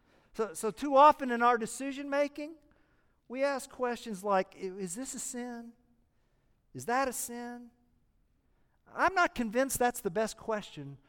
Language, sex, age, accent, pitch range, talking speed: English, male, 50-69, American, 155-255 Hz, 140 wpm